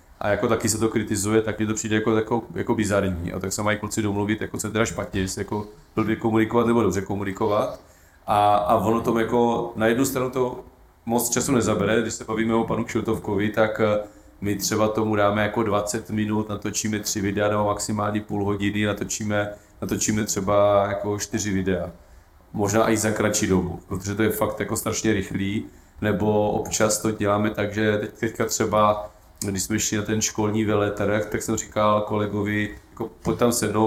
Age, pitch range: 30-49, 105-110 Hz